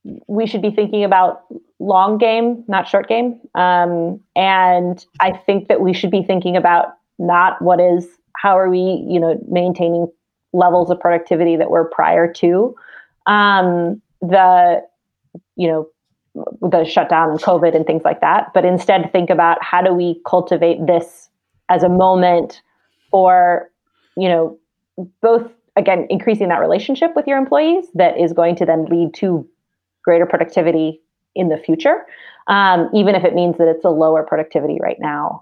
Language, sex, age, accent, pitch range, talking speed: English, female, 30-49, American, 170-195 Hz, 160 wpm